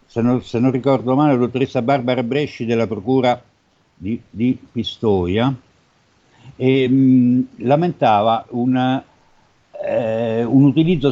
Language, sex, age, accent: Italian, male, 60-79, native